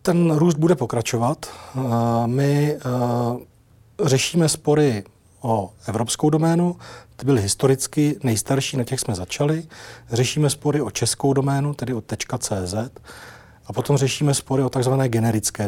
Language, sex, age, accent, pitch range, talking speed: Czech, male, 40-59, native, 115-135 Hz, 125 wpm